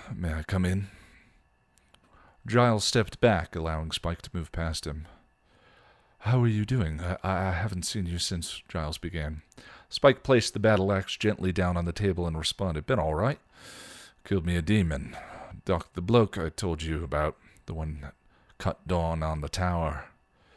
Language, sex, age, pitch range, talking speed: English, male, 40-59, 80-100 Hz, 170 wpm